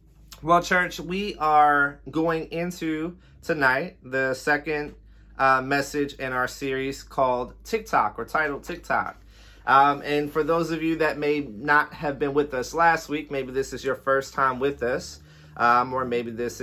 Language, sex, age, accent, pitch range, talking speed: English, male, 30-49, American, 120-150 Hz, 165 wpm